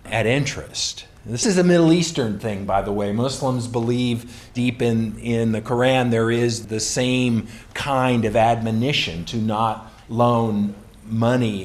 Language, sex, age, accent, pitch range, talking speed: English, male, 50-69, American, 100-130 Hz, 150 wpm